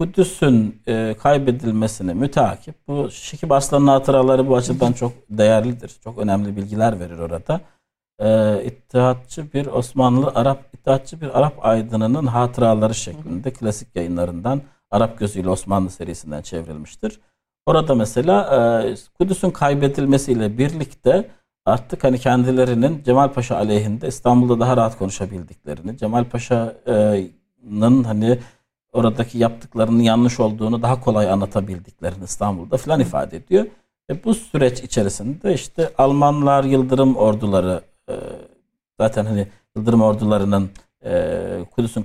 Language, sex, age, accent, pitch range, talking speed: Turkish, male, 60-79, native, 105-130 Hz, 105 wpm